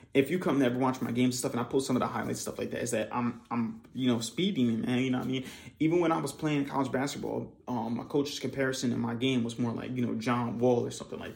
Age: 20-39